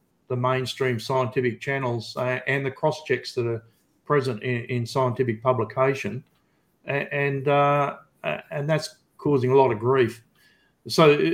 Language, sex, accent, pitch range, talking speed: English, male, Australian, 125-155 Hz, 140 wpm